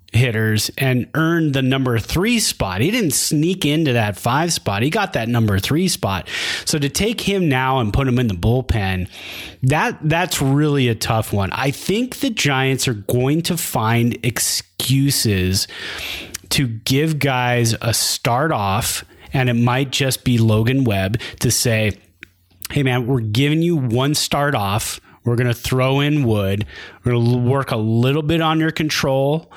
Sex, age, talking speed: male, 30-49, 170 wpm